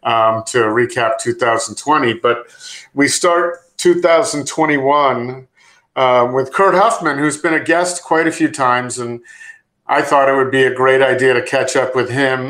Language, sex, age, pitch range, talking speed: English, male, 50-69, 130-170 Hz, 165 wpm